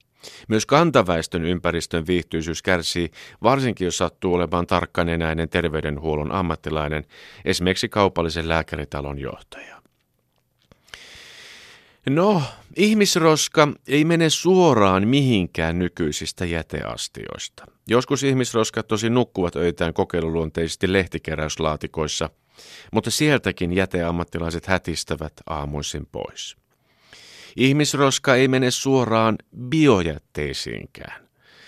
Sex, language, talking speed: male, Finnish, 80 wpm